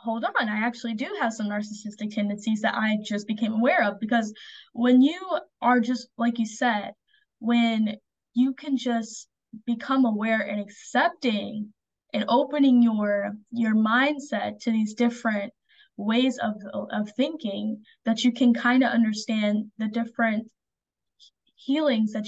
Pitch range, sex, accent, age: 210-245 Hz, female, American, 10-29